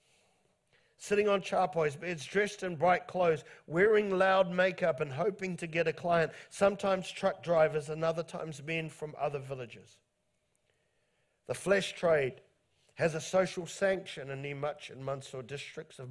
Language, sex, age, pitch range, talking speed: English, male, 50-69, 140-180 Hz, 150 wpm